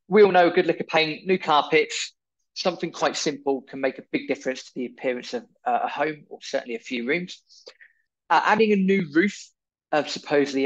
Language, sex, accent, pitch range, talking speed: English, male, British, 125-170 Hz, 210 wpm